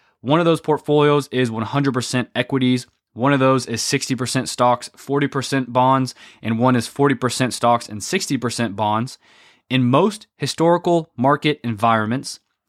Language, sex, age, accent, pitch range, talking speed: English, male, 20-39, American, 125-165 Hz, 130 wpm